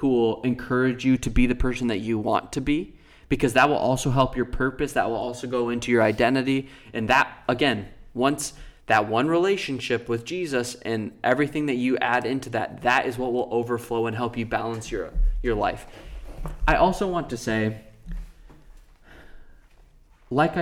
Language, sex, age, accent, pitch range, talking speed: English, male, 20-39, American, 120-165 Hz, 180 wpm